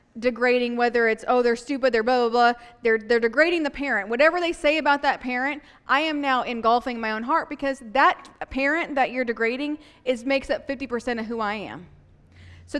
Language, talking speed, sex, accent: English, 200 wpm, female, American